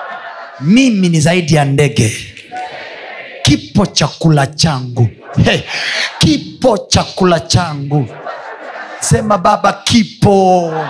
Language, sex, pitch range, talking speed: Swahili, male, 155-220 Hz, 85 wpm